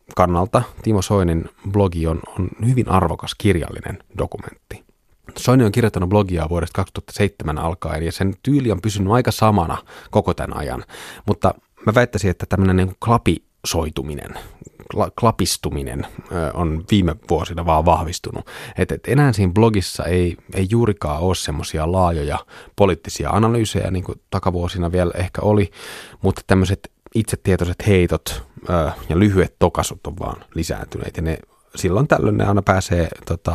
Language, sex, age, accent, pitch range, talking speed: Finnish, male, 30-49, native, 85-105 Hz, 135 wpm